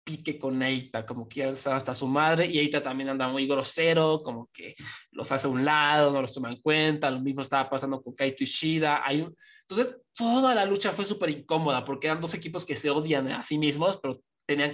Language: Spanish